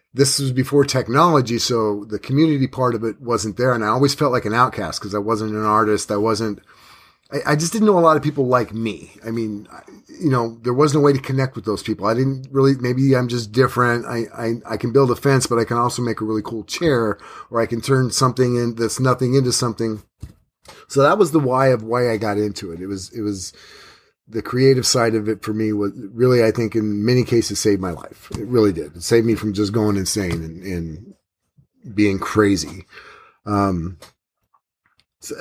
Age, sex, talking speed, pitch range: 30-49, male, 225 wpm, 110-135 Hz